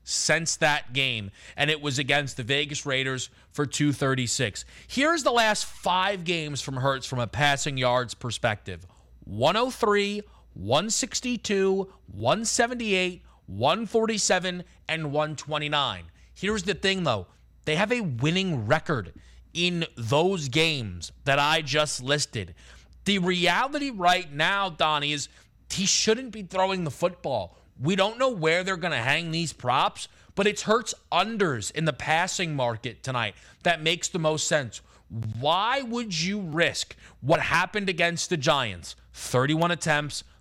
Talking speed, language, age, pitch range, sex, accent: 140 wpm, English, 30-49, 130-195 Hz, male, American